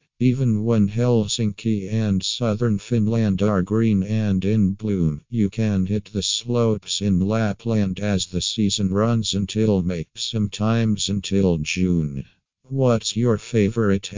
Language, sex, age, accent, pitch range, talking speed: English, male, 50-69, American, 95-110 Hz, 125 wpm